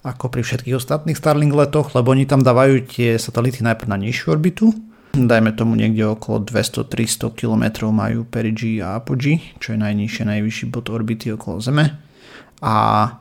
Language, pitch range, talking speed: Slovak, 110-125 Hz, 160 wpm